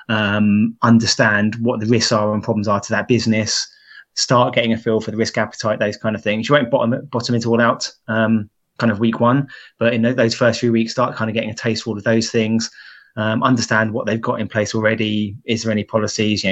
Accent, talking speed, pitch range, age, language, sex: British, 235 wpm, 105-115 Hz, 20-39, English, male